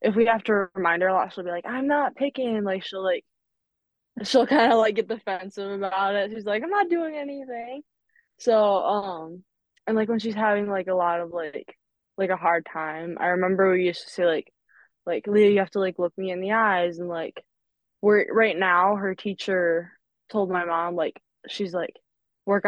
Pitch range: 175-210 Hz